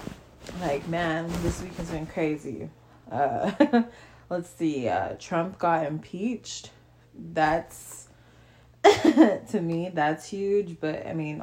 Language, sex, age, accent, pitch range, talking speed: English, female, 20-39, American, 145-180 Hz, 115 wpm